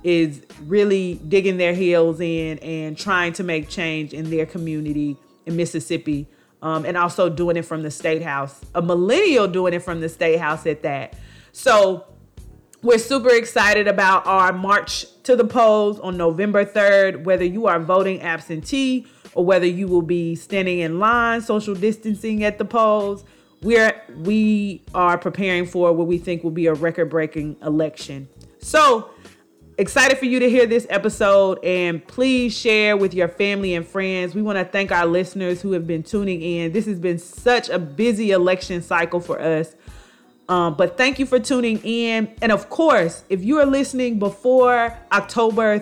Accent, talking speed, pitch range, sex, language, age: American, 175 wpm, 170-210 Hz, female, English, 30-49